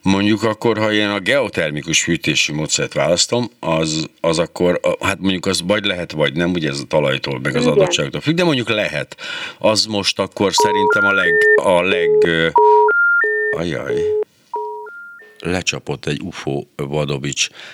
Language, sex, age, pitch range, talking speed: Hungarian, male, 60-79, 75-105 Hz, 145 wpm